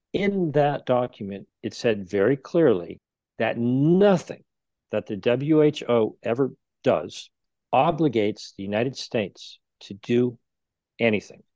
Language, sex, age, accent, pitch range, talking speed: English, male, 50-69, American, 115-145 Hz, 110 wpm